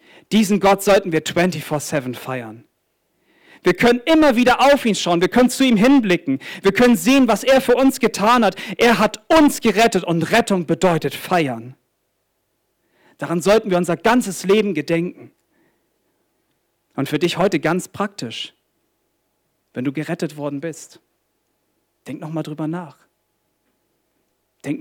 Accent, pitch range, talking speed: German, 130-185 Hz, 140 wpm